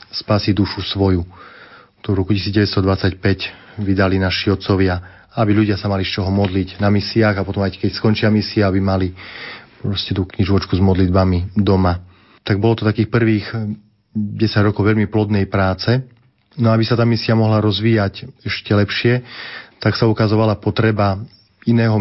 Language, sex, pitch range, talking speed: Slovak, male, 100-110 Hz, 155 wpm